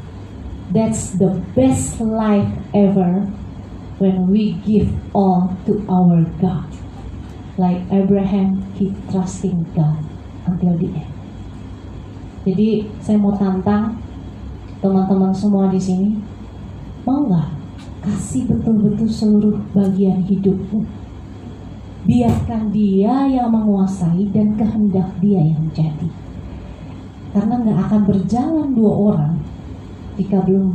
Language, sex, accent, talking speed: Indonesian, female, native, 100 wpm